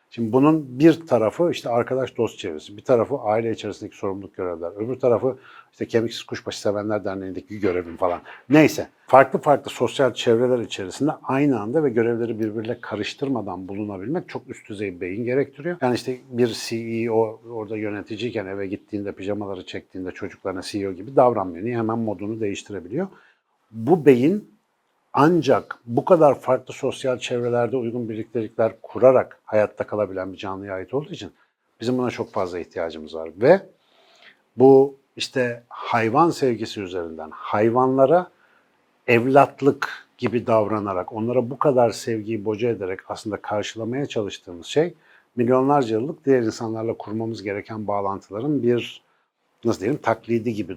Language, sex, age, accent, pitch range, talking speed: Turkish, male, 60-79, native, 105-125 Hz, 135 wpm